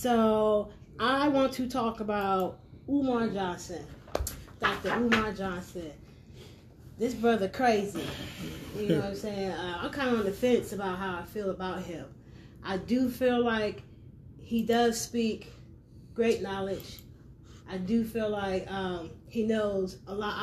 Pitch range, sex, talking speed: 170-225 Hz, female, 145 wpm